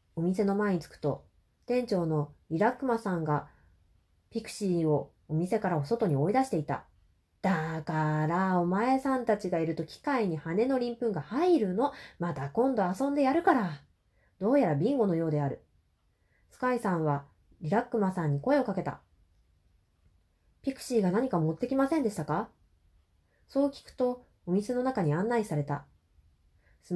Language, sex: Japanese, female